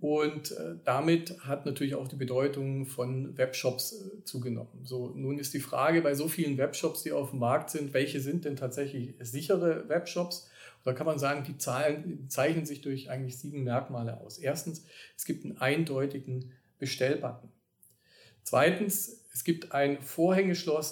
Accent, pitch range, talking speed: German, 130-165 Hz, 150 wpm